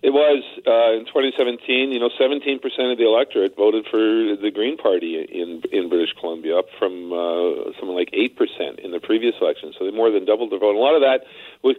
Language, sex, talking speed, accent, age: English, male, 225 wpm, American, 50-69